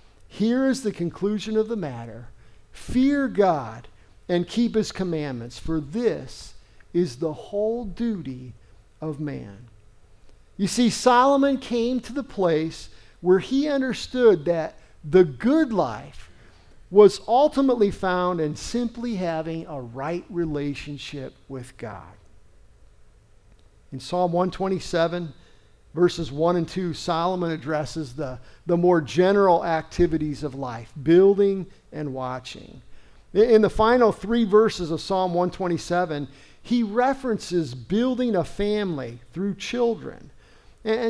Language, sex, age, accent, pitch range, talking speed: English, male, 50-69, American, 140-215 Hz, 120 wpm